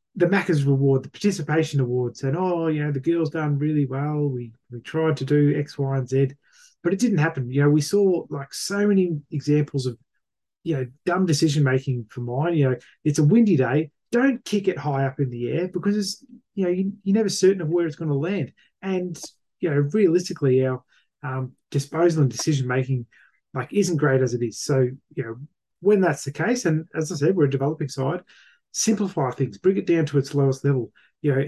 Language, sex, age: English, male, 20-39